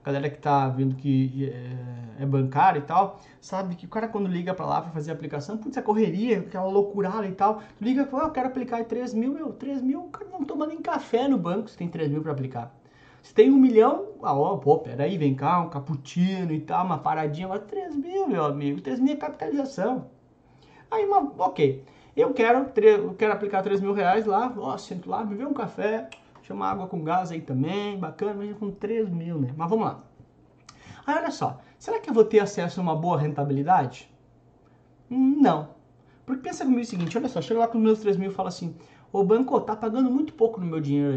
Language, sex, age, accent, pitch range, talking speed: Portuguese, male, 20-39, Brazilian, 150-235 Hz, 225 wpm